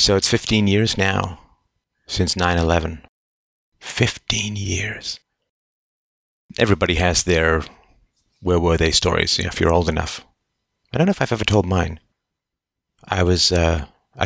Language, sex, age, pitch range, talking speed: English, male, 30-49, 80-95 Hz, 120 wpm